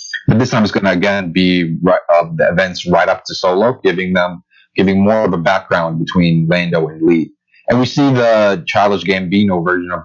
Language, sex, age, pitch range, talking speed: English, male, 30-49, 85-110 Hz, 205 wpm